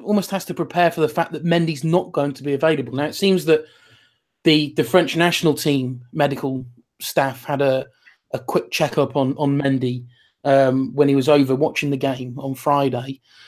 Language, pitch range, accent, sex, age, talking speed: English, 140-165 Hz, British, male, 30-49, 190 wpm